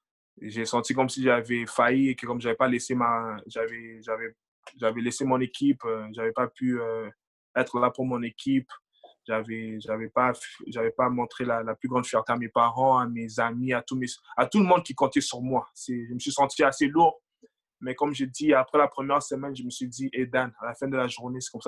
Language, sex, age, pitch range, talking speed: French, male, 20-39, 120-135 Hz, 225 wpm